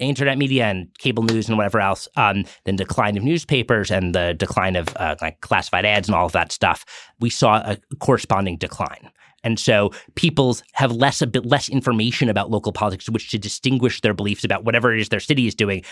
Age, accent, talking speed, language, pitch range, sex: 30-49, American, 215 wpm, English, 105-140 Hz, male